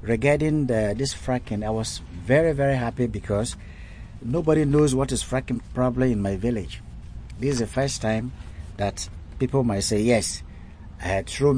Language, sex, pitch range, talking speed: English, male, 90-120 Hz, 160 wpm